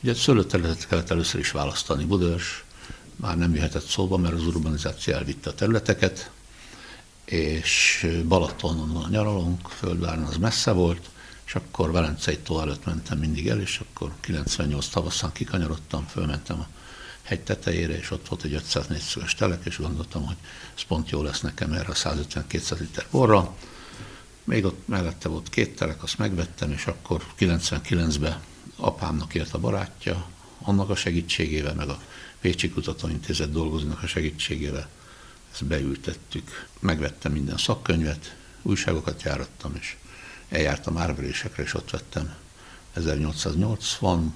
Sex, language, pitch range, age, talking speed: male, Hungarian, 75-90 Hz, 60-79, 135 wpm